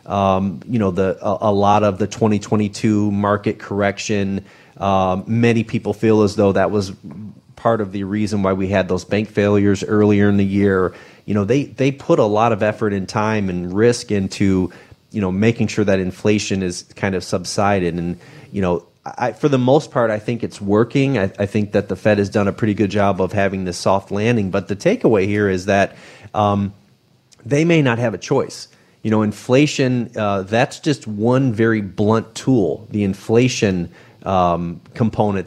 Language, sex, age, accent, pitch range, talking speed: English, male, 30-49, American, 95-115 Hz, 195 wpm